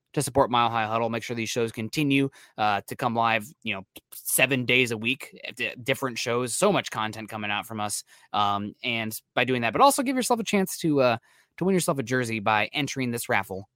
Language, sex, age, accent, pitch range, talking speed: English, male, 20-39, American, 110-135 Hz, 225 wpm